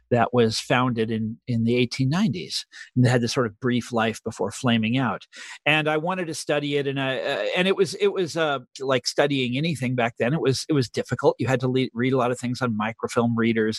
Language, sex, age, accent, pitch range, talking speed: English, male, 40-59, American, 130-175 Hz, 240 wpm